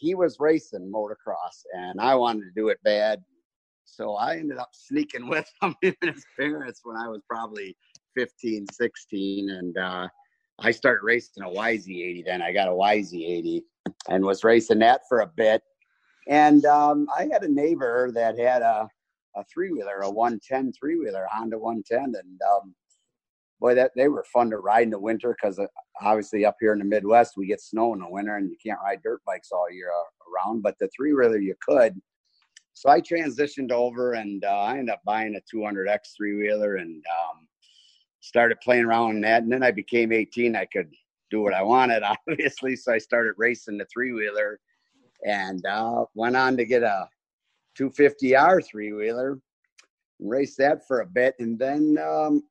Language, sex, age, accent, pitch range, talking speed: English, male, 50-69, American, 105-145 Hz, 185 wpm